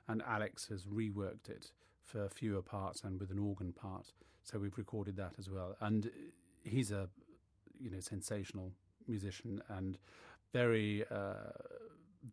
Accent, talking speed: British, 140 wpm